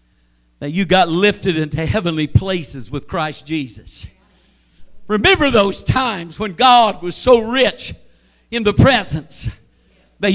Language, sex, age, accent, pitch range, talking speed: English, male, 50-69, American, 190-270 Hz, 130 wpm